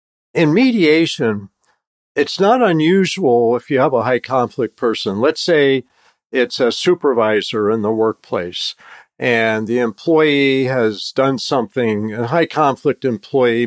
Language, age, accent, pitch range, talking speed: English, 50-69, American, 110-160 Hz, 125 wpm